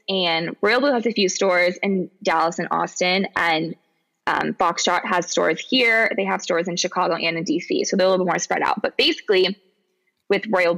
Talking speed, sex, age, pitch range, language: 205 wpm, female, 20-39, 175-225 Hz, English